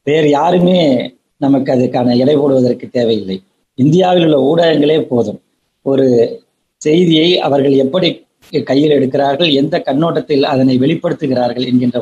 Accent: native